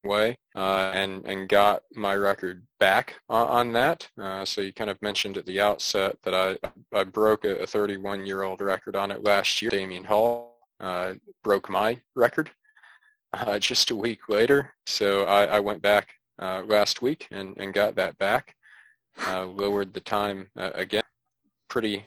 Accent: American